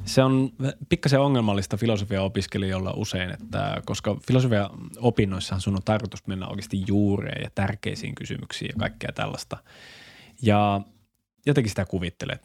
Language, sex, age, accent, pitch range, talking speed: Finnish, male, 20-39, native, 100-125 Hz, 120 wpm